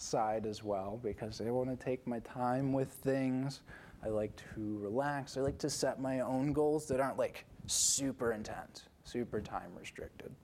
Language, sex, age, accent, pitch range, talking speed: English, male, 20-39, American, 110-140 Hz, 180 wpm